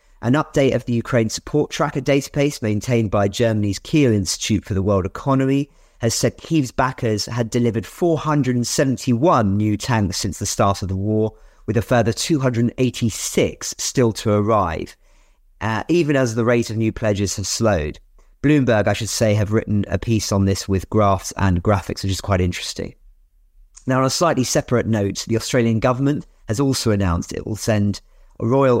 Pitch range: 100-120 Hz